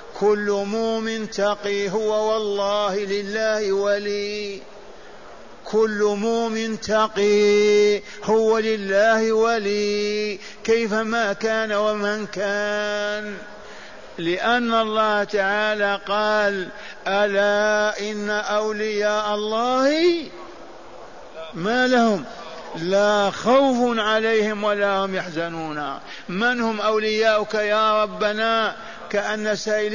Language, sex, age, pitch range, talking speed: Arabic, male, 50-69, 195-220 Hz, 80 wpm